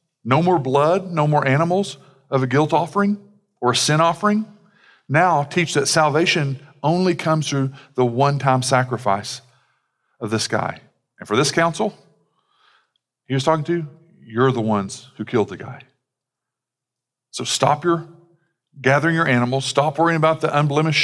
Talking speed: 155 wpm